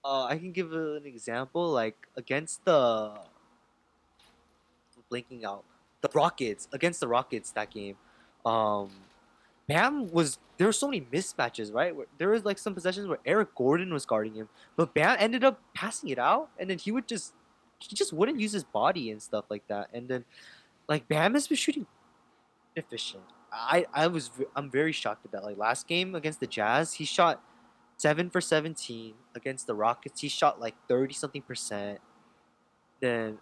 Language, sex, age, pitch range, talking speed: English, male, 20-39, 115-170 Hz, 170 wpm